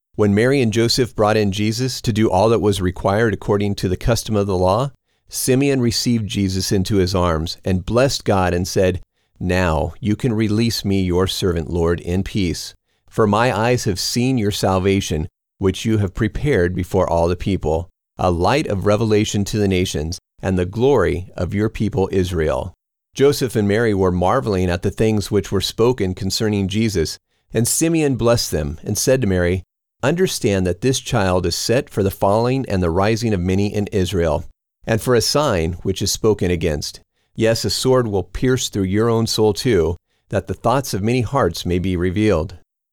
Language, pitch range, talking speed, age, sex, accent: English, 90-120 Hz, 185 wpm, 40-59, male, American